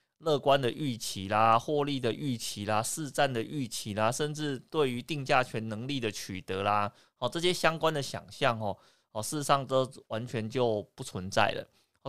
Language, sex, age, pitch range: Chinese, male, 20-39, 110-145 Hz